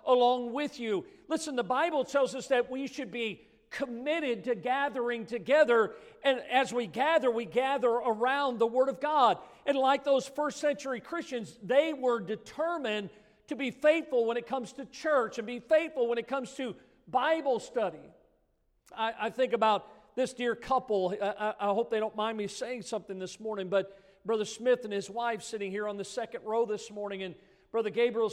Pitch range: 210-255 Hz